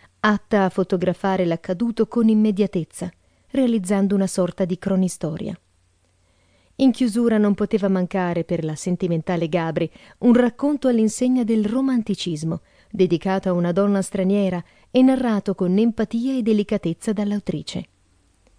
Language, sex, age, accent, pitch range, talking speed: Italian, female, 40-59, native, 170-215 Hz, 120 wpm